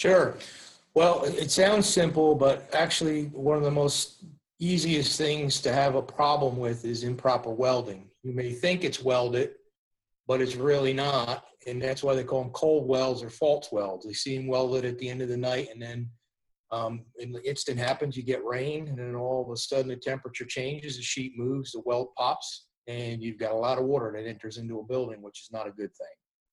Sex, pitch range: male, 120-145 Hz